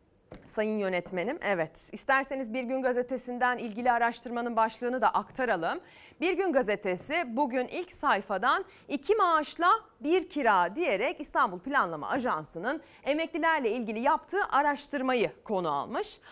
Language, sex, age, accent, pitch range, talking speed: Turkish, female, 30-49, native, 215-330 Hz, 120 wpm